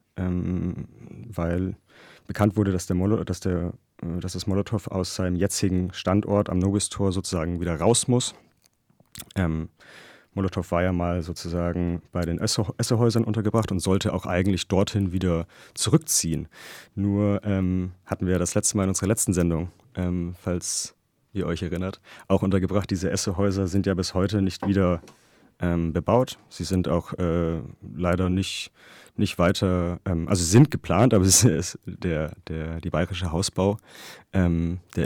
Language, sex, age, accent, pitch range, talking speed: German, male, 30-49, German, 90-105 Hz, 150 wpm